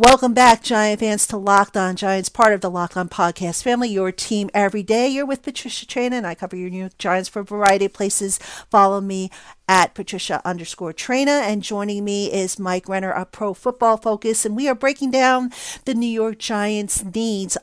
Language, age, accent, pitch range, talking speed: English, 50-69, American, 190-225 Hz, 205 wpm